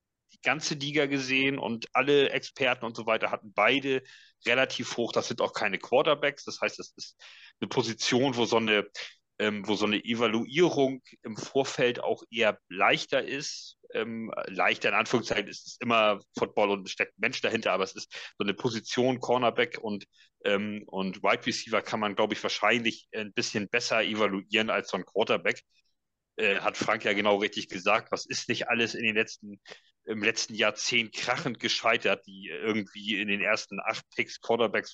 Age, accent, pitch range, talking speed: 40-59, German, 105-125 Hz, 180 wpm